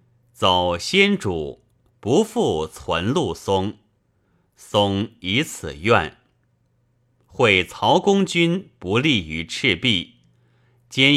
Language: Chinese